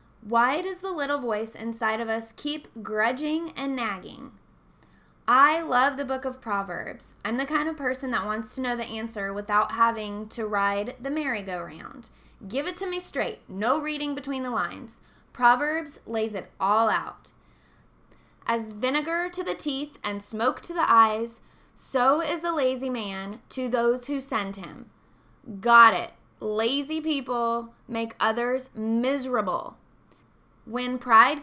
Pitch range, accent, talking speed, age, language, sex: 225-290 Hz, American, 150 wpm, 10-29, English, female